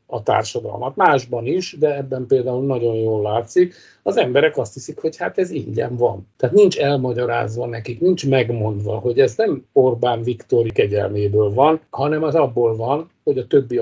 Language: Hungarian